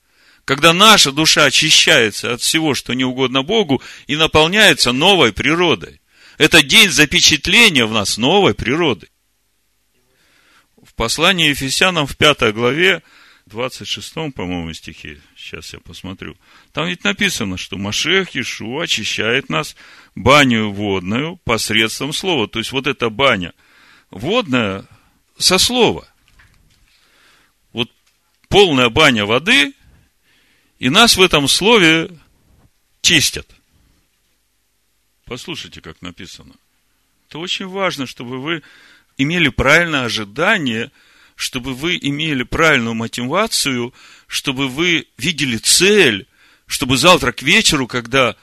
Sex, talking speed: male, 110 wpm